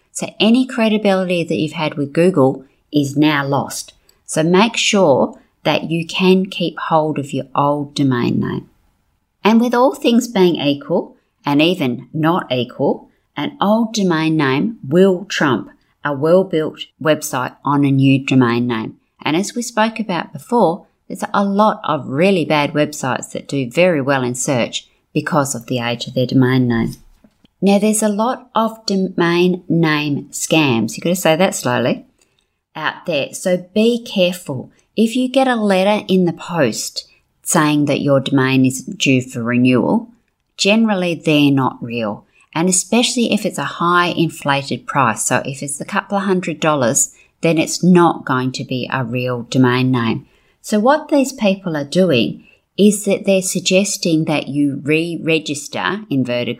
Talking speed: 165 wpm